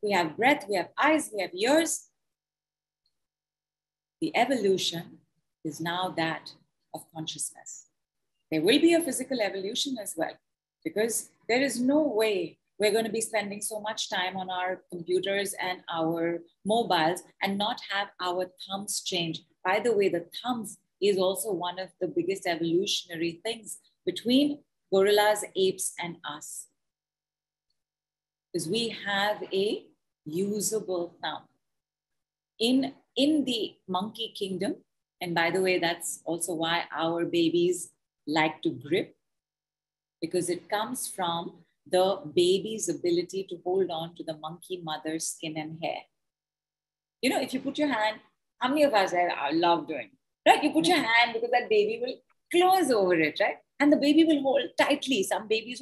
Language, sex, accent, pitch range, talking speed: English, female, Indian, 165-225 Hz, 155 wpm